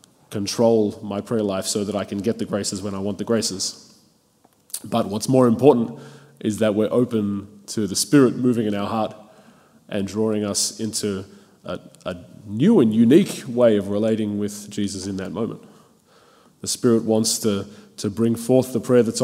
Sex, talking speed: male, 180 wpm